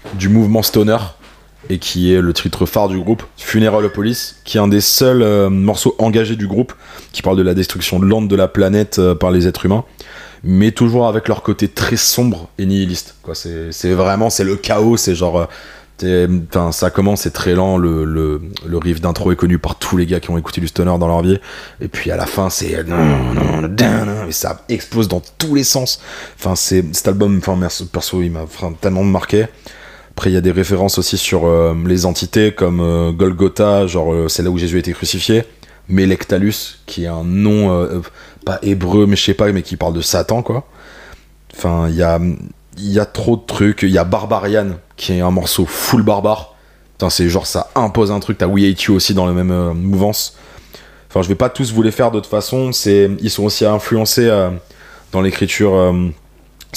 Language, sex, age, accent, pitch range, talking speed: French, male, 20-39, French, 90-105 Hz, 205 wpm